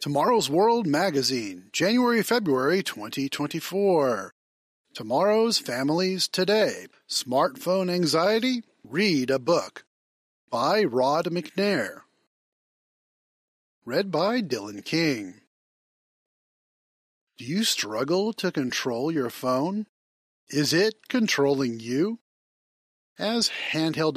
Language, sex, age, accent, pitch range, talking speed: English, male, 40-59, American, 135-210 Hz, 80 wpm